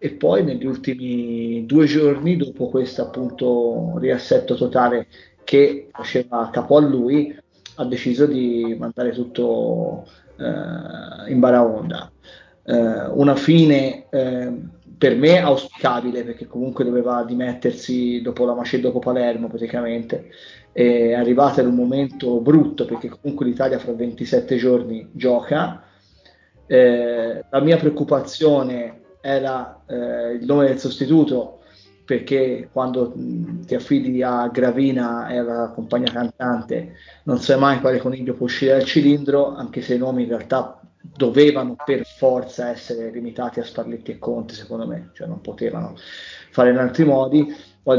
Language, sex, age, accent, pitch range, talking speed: Italian, male, 30-49, native, 120-140 Hz, 135 wpm